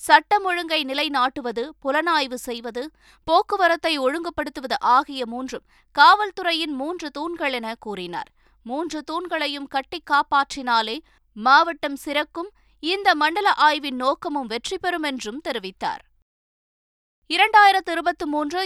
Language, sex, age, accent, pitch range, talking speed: Tamil, female, 20-39, native, 245-310 Hz, 100 wpm